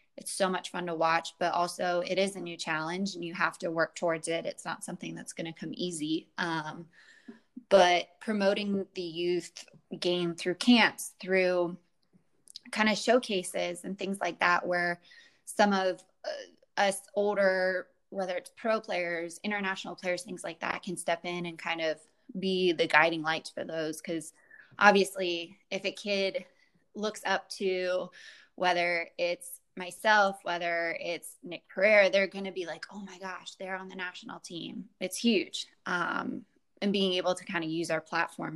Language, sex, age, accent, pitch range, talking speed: English, female, 20-39, American, 170-200 Hz, 170 wpm